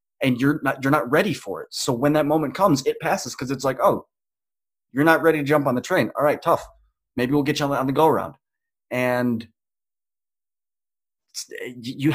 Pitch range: 125-160 Hz